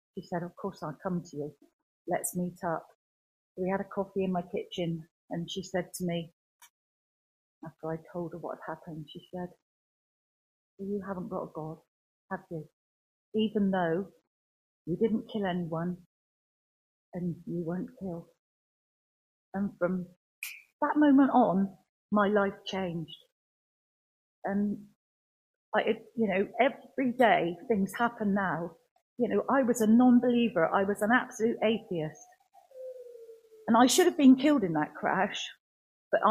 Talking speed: 145 wpm